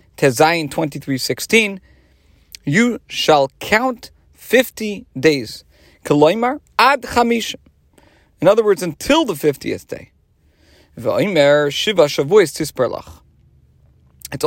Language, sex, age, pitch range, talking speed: English, male, 40-59, 135-205 Hz, 60 wpm